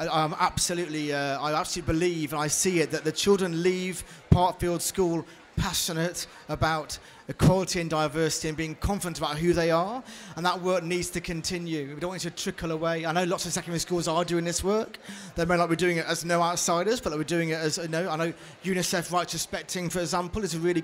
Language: English